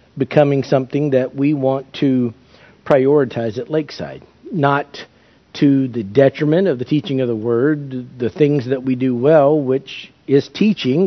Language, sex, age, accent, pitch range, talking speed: English, male, 50-69, American, 130-155 Hz, 150 wpm